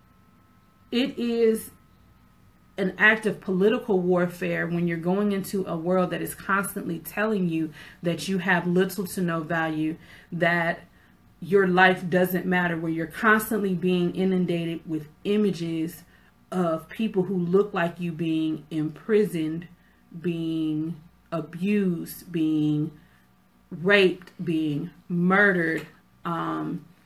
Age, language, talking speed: 30-49, English, 115 wpm